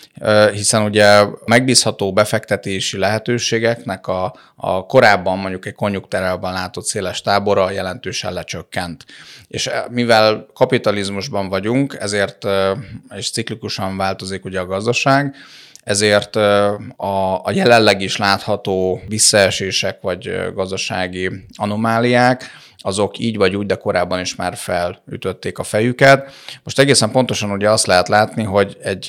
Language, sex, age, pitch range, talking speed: Hungarian, male, 30-49, 95-110 Hz, 120 wpm